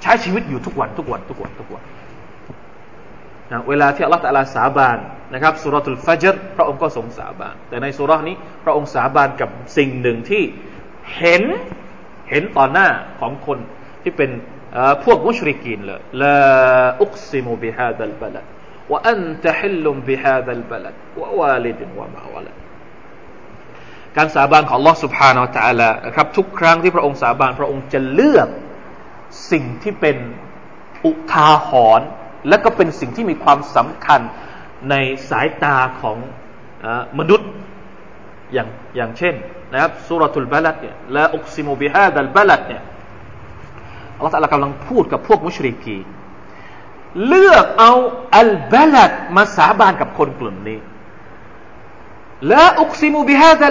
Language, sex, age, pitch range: Thai, male, 20-39, 130-175 Hz